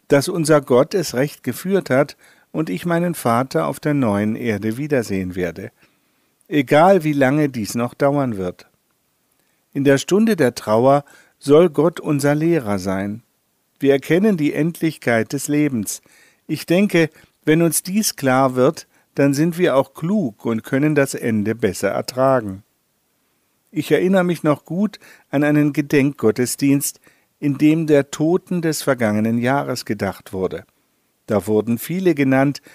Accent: German